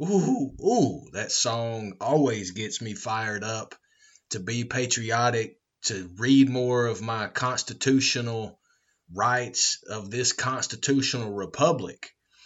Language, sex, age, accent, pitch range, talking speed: English, male, 30-49, American, 115-140 Hz, 110 wpm